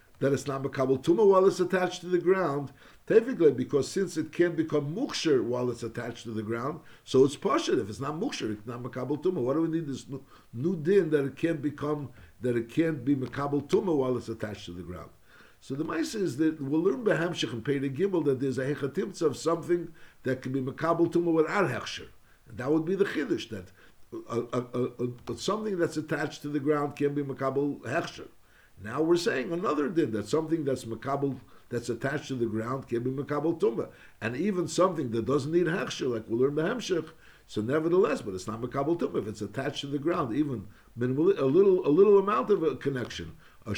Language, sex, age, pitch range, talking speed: English, male, 60-79, 125-170 Hz, 210 wpm